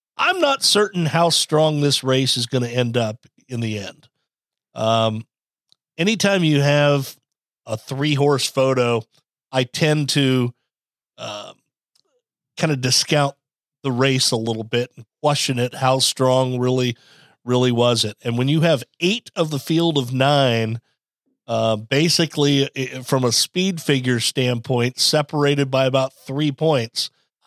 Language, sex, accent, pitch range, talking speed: English, male, American, 125-150 Hz, 145 wpm